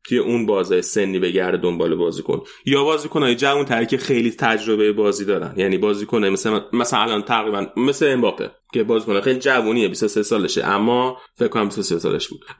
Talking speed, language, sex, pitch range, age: 185 wpm, Persian, male, 105-120 Hz, 30-49